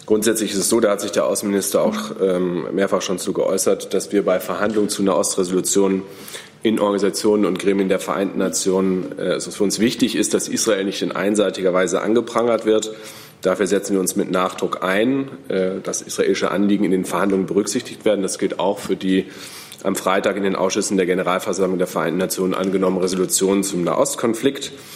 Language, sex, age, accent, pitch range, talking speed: German, male, 30-49, German, 95-105 Hz, 185 wpm